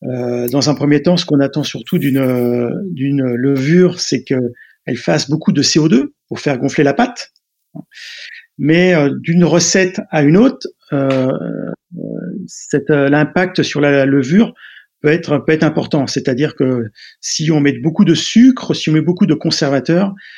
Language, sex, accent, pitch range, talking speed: French, male, French, 135-175 Hz, 160 wpm